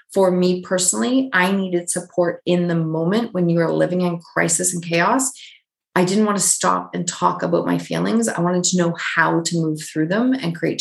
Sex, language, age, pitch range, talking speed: female, English, 30-49, 165-185 Hz, 210 wpm